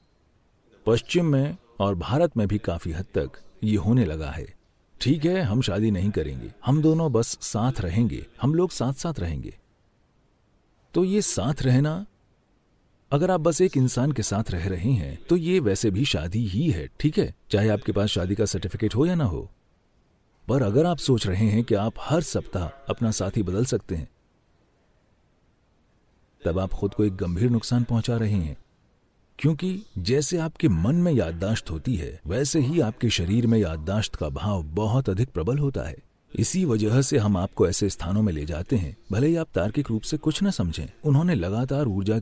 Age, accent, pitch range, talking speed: 40-59, Indian, 95-140 Hz, 160 wpm